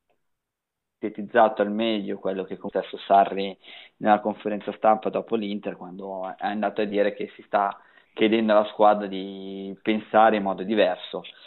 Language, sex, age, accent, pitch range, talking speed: Italian, male, 20-39, native, 100-115 Hz, 145 wpm